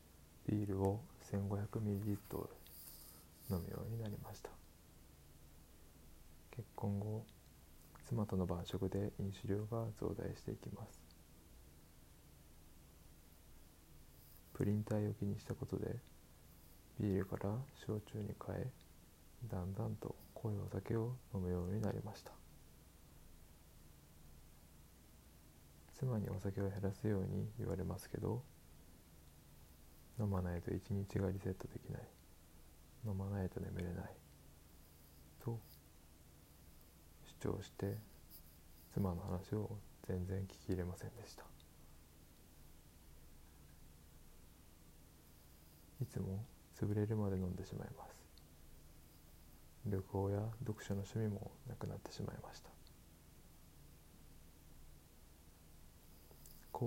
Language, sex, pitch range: Japanese, male, 80-105 Hz